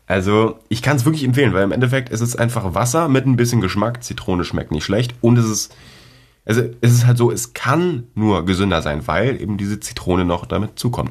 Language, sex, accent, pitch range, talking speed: German, male, German, 90-120 Hz, 220 wpm